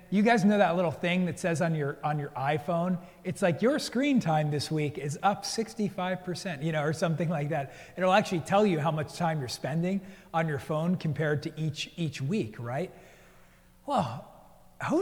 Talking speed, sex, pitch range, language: 195 wpm, male, 145-190 Hz, English